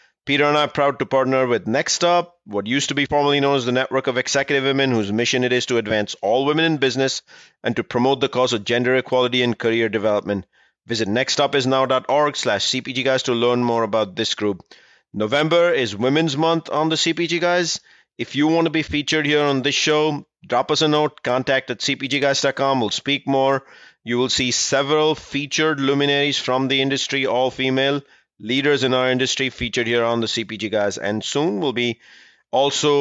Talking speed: 195 wpm